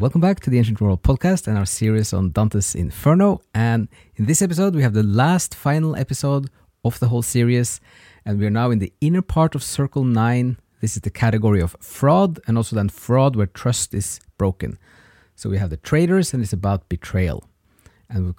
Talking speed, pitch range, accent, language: 205 wpm, 95-140 Hz, Norwegian, English